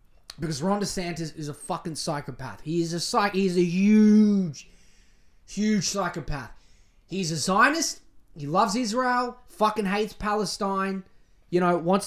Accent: Australian